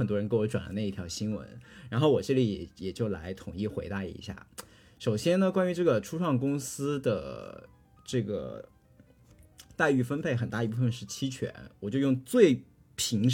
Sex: male